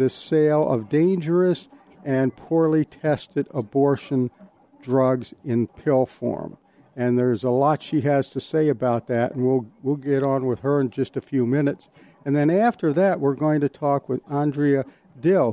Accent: American